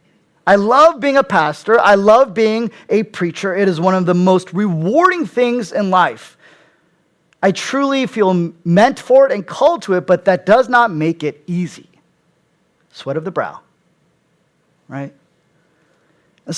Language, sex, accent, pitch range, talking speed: English, male, American, 160-205 Hz, 155 wpm